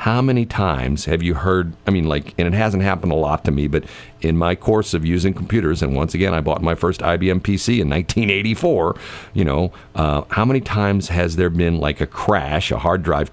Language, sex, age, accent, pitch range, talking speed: English, male, 50-69, American, 80-105 Hz, 225 wpm